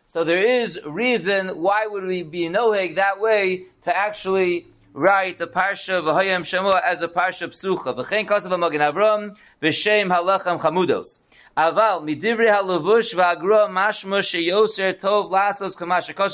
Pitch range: 175-210 Hz